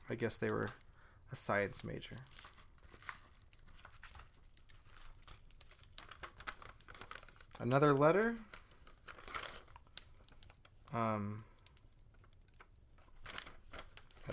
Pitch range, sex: 105-125 Hz, male